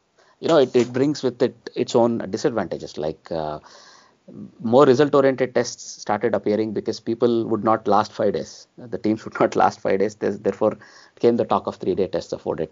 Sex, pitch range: male, 105-135 Hz